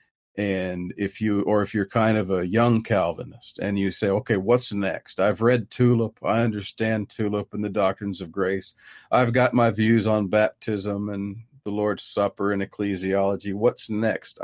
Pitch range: 95-110 Hz